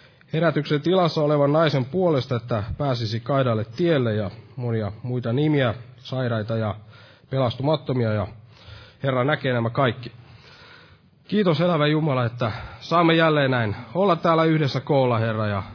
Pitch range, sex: 120-155 Hz, male